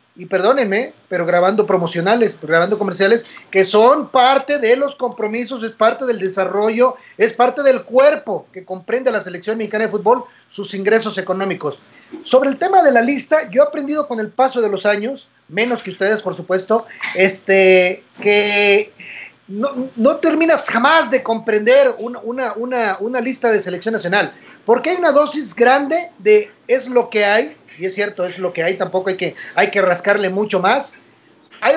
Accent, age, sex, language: Mexican, 40-59, male, Spanish